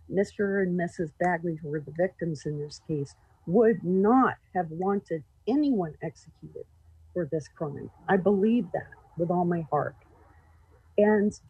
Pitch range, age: 150-210 Hz, 50-69